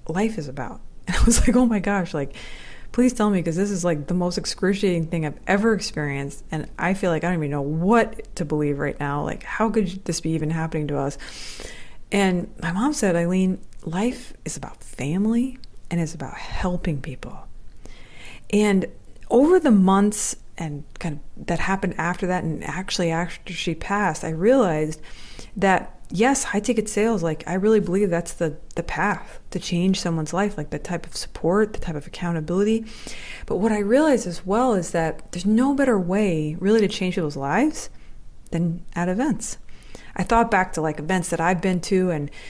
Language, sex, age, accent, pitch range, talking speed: English, female, 30-49, American, 160-220 Hz, 190 wpm